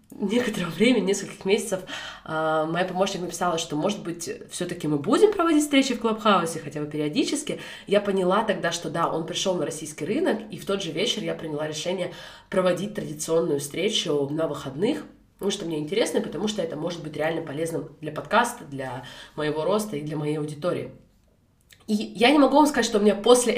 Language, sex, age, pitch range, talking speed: Russian, female, 20-39, 165-215 Hz, 185 wpm